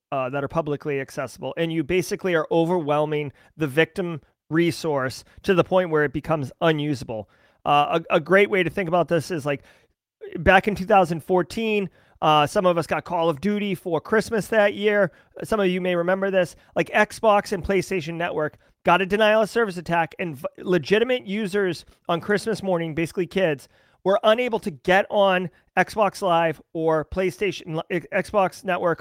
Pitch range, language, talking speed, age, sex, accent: 155-200 Hz, English, 170 wpm, 30-49, male, American